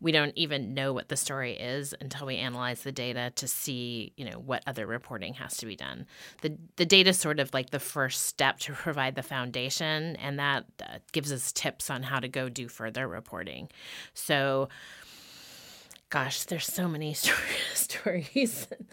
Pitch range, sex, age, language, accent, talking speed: 130-155 Hz, female, 30-49, English, American, 185 wpm